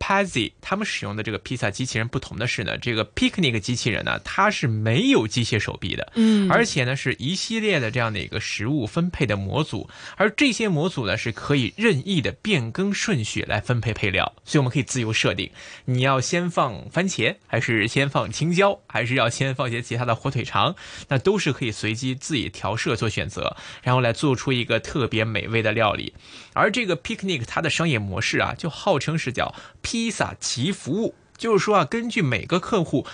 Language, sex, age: Chinese, male, 20-39